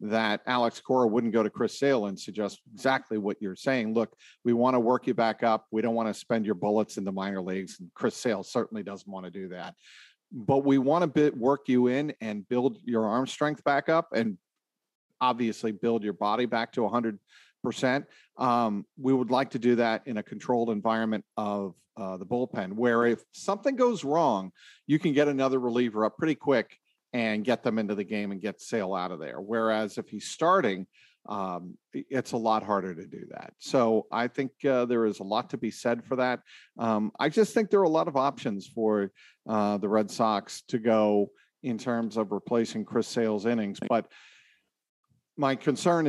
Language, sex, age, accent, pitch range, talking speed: English, male, 50-69, American, 105-125 Hz, 205 wpm